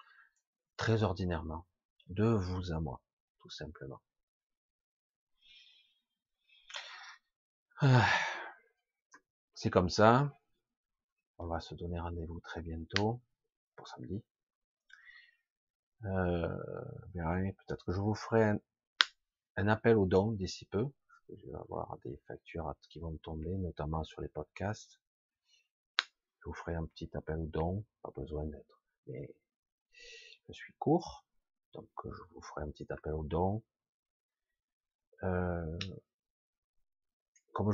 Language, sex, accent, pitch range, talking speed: French, male, French, 85-120 Hz, 115 wpm